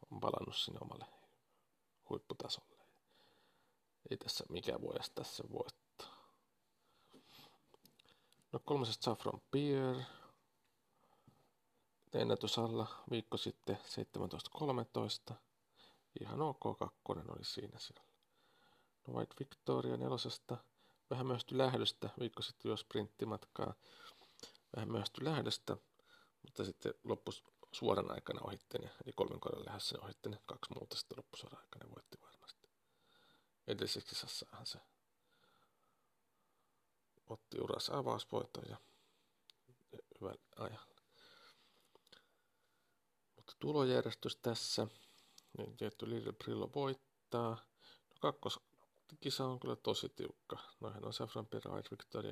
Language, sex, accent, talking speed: Finnish, male, native, 100 wpm